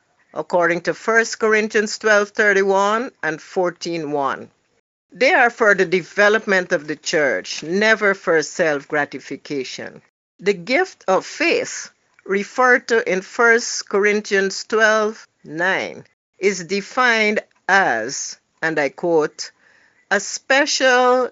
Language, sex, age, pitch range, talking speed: English, female, 60-79, 175-230 Hz, 100 wpm